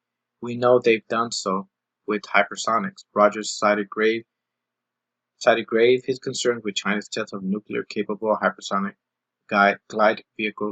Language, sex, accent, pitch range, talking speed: English, male, American, 95-120 Hz, 130 wpm